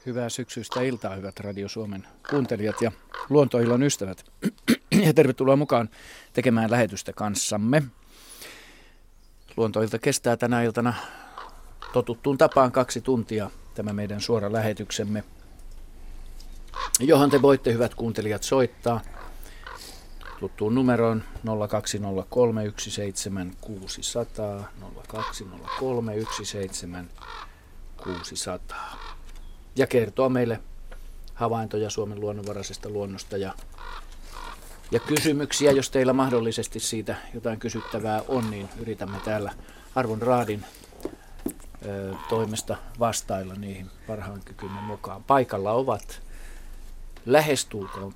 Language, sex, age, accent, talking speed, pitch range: Finnish, male, 40-59, native, 85 wpm, 95-120 Hz